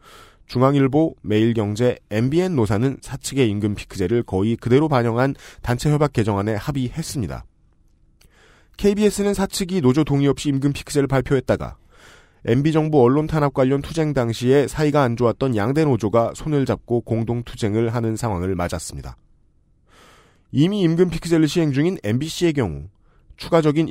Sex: male